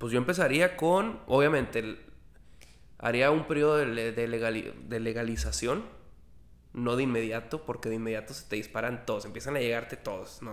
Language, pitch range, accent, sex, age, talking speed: Spanish, 110-145 Hz, Mexican, male, 20-39, 160 wpm